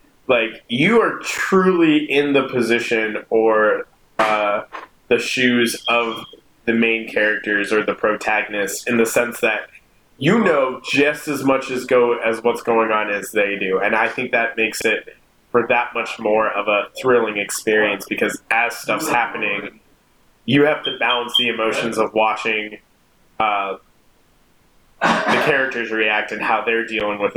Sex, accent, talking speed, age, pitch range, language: male, American, 155 wpm, 20-39, 105-125 Hz, English